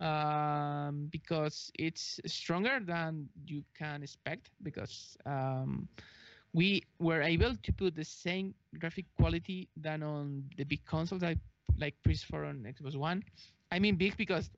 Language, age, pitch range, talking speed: English, 20-39, 140-165 Hz, 140 wpm